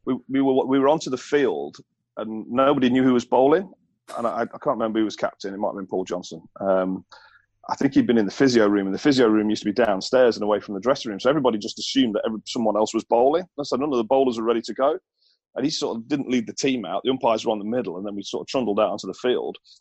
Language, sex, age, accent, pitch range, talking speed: English, male, 30-49, British, 105-125 Hz, 295 wpm